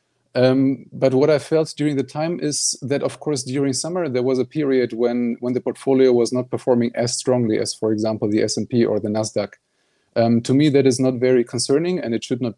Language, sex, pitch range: English, male, 110-130 Hz